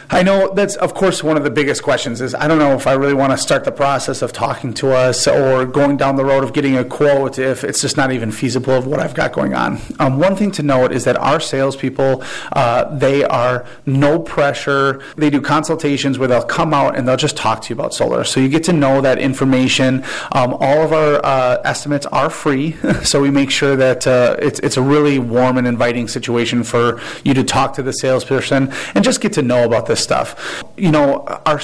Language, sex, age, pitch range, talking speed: English, male, 30-49, 130-150 Hz, 235 wpm